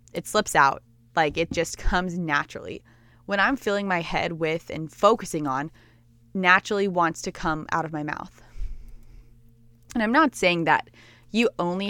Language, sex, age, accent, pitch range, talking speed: English, female, 20-39, American, 145-195 Hz, 160 wpm